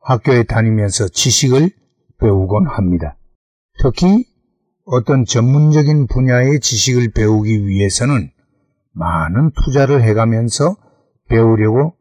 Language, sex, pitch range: Korean, male, 115-155 Hz